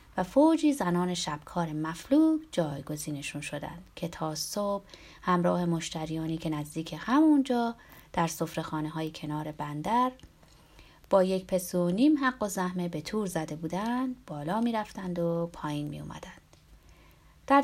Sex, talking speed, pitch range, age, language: female, 140 wpm, 155-245 Hz, 30-49, Persian